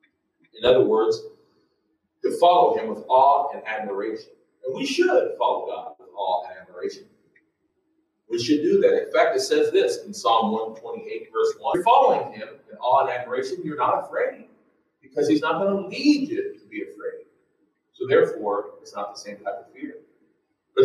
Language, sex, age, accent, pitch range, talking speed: English, male, 40-59, American, 300-430 Hz, 185 wpm